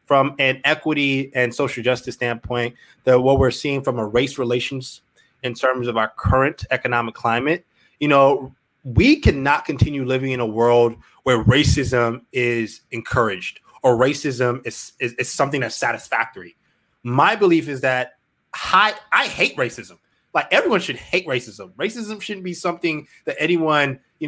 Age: 20-39